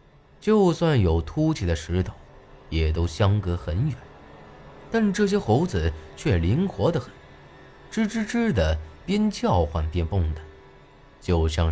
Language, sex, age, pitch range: Chinese, male, 20-39, 80-130 Hz